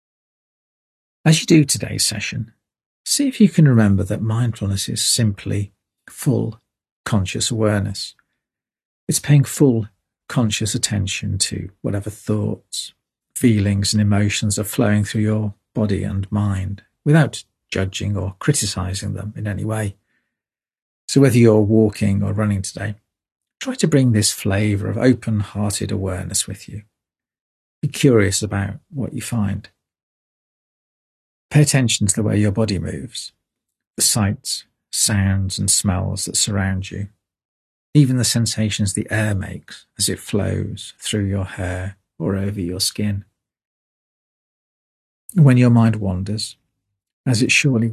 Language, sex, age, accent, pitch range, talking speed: English, male, 40-59, British, 100-115 Hz, 130 wpm